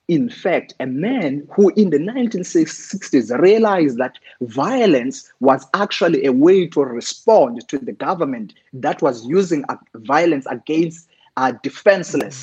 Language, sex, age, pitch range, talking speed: English, male, 30-49, 145-230 Hz, 130 wpm